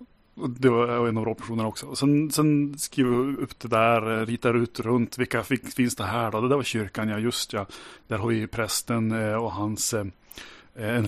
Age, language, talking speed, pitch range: 30-49, Swedish, 195 wpm, 110-125 Hz